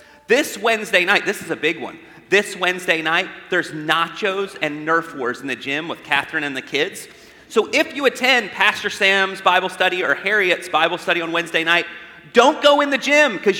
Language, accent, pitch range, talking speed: English, American, 165-235 Hz, 200 wpm